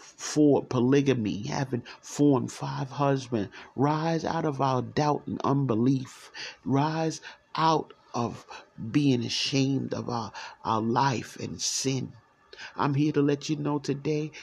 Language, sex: English, male